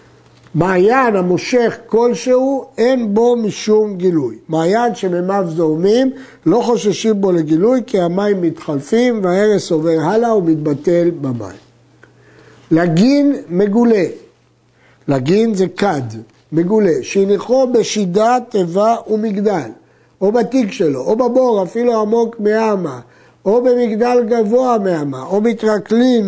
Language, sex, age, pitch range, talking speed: Hebrew, male, 60-79, 175-235 Hz, 105 wpm